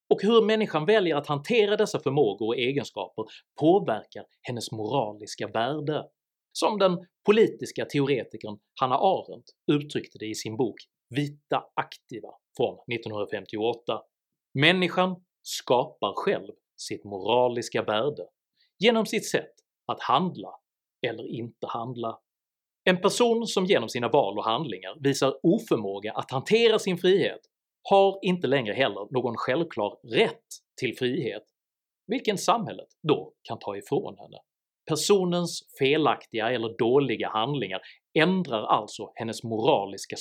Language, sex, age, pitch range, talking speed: Swedish, male, 30-49, 125-200 Hz, 120 wpm